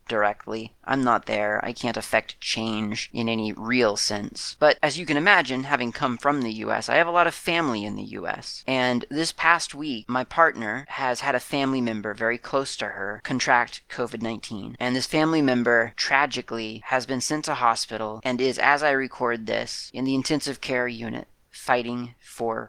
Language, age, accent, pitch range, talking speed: English, 30-49, American, 115-135 Hz, 190 wpm